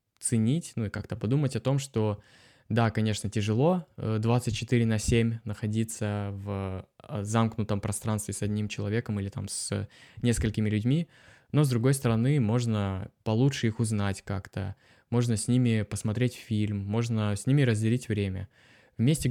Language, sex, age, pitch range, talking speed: Russian, male, 20-39, 105-125 Hz, 145 wpm